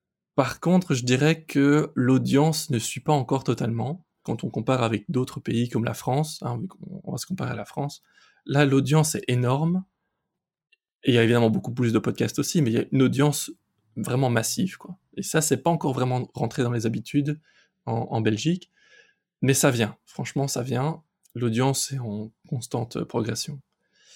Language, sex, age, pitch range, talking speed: French, male, 20-39, 115-150 Hz, 185 wpm